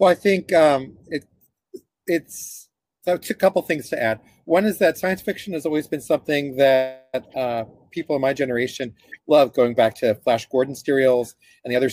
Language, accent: English, American